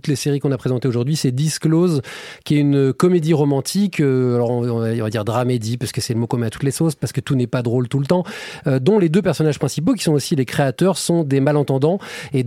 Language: French